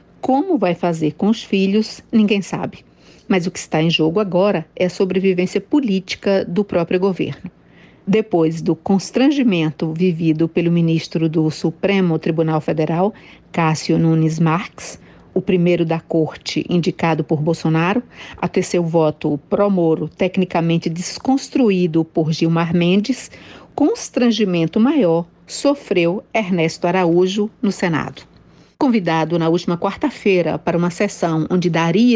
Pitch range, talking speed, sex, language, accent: 165-205 Hz, 130 wpm, female, Portuguese, Brazilian